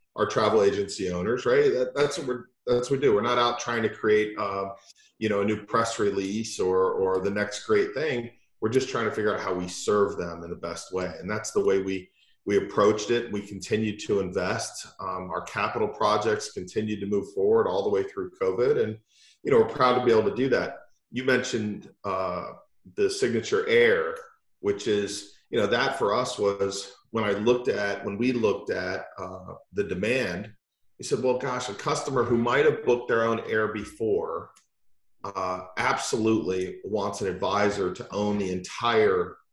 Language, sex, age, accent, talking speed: English, male, 40-59, American, 200 wpm